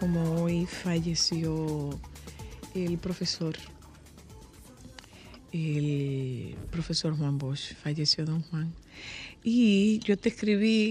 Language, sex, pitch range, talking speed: Spanish, female, 160-195 Hz, 90 wpm